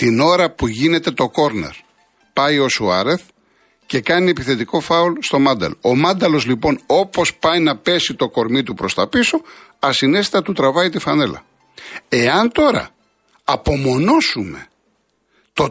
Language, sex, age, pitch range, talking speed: Greek, male, 60-79, 125-200 Hz, 140 wpm